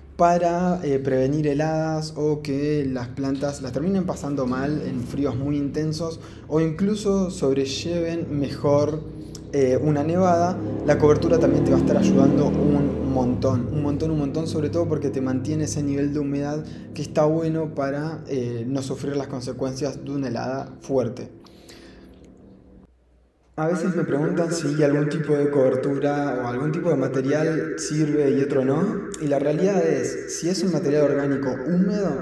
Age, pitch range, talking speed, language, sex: 20-39, 130-150 Hz, 160 wpm, Spanish, male